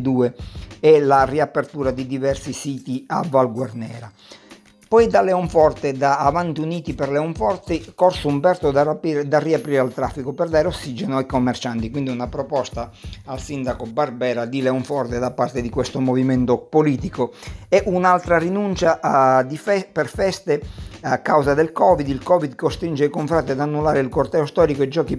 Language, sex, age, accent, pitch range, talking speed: Italian, male, 50-69, native, 130-165 Hz, 160 wpm